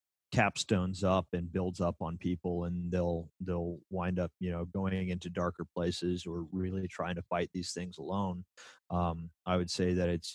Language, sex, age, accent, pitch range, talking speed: English, male, 30-49, American, 85-95 Hz, 185 wpm